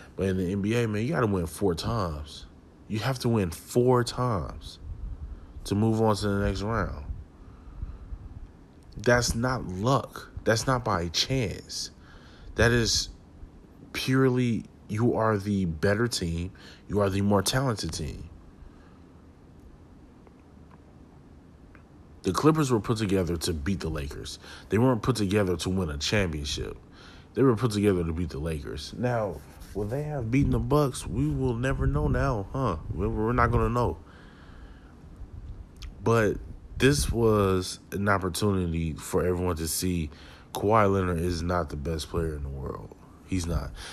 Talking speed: 150 wpm